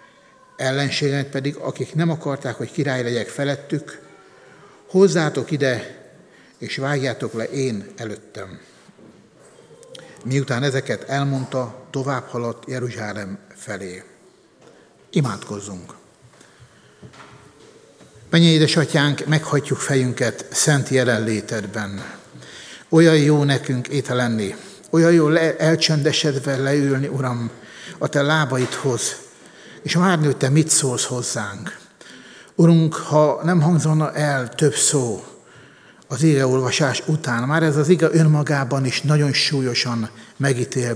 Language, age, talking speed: Hungarian, 60-79, 100 wpm